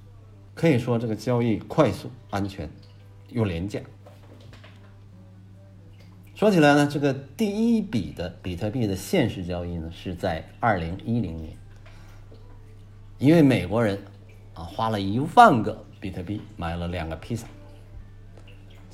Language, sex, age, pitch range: Chinese, male, 50-69, 100-115 Hz